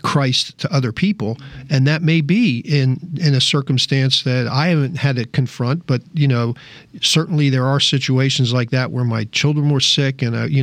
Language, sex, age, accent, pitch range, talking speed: English, male, 40-59, American, 125-145 Hz, 200 wpm